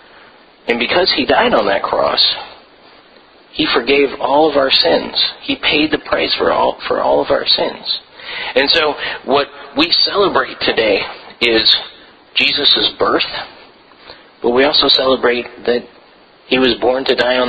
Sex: male